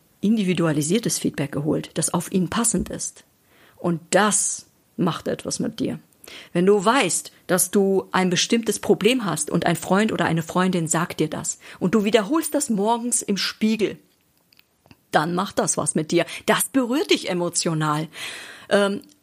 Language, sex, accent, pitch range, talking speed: German, female, German, 175-220 Hz, 155 wpm